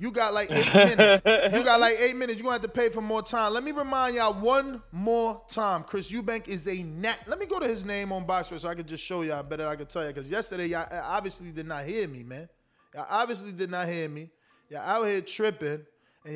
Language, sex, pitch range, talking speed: English, male, 170-230 Hz, 255 wpm